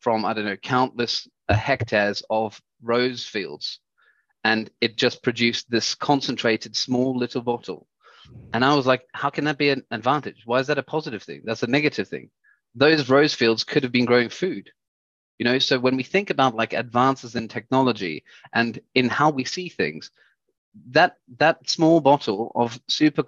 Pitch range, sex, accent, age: 115-135 Hz, male, British, 30-49